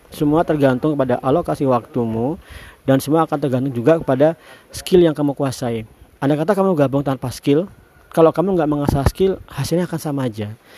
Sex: male